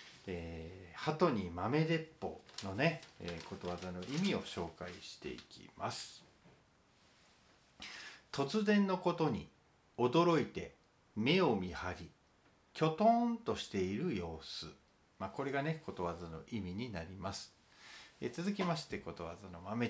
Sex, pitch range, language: male, 95-155 Hz, Japanese